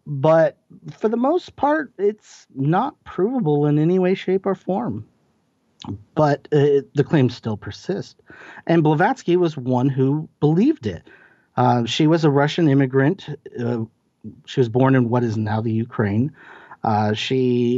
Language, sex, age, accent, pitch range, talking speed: English, male, 40-59, American, 120-160 Hz, 150 wpm